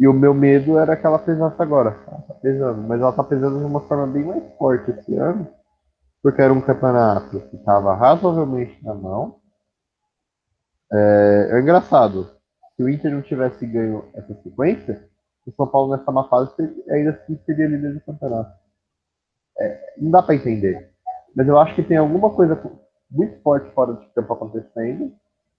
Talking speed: 175 wpm